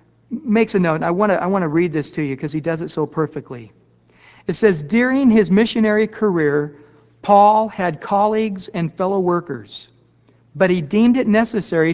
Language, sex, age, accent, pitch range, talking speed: English, male, 60-79, American, 155-200 Hz, 180 wpm